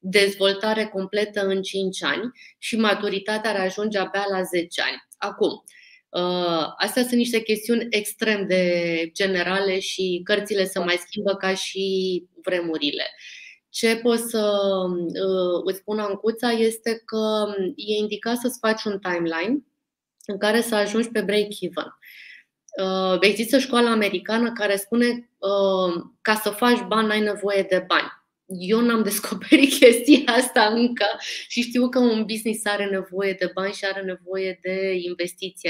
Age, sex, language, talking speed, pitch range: 20-39, female, Romanian, 145 wpm, 185-230 Hz